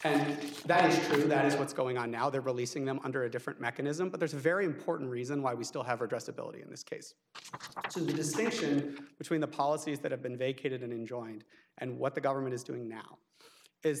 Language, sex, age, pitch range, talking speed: English, male, 30-49, 135-165 Hz, 220 wpm